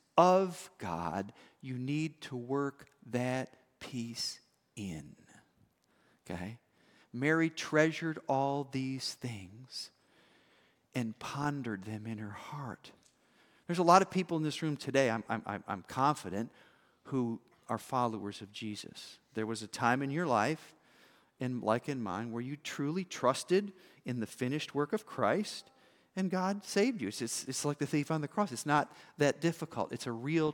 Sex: male